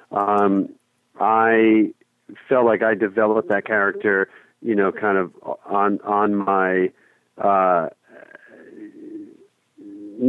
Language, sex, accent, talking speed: English, male, American, 95 wpm